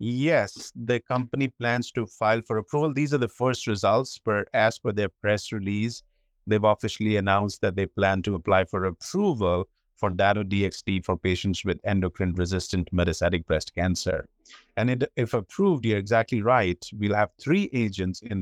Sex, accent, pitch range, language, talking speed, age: male, Indian, 95-120 Hz, English, 165 wpm, 50-69